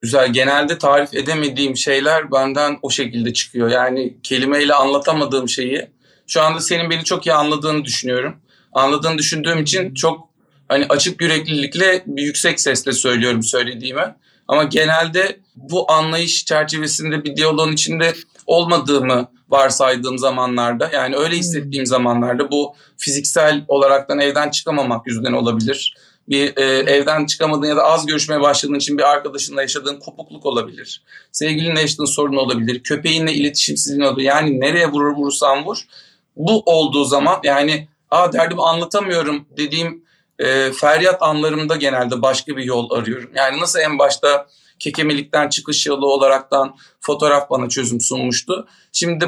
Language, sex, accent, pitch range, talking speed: Turkish, male, native, 135-160 Hz, 135 wpm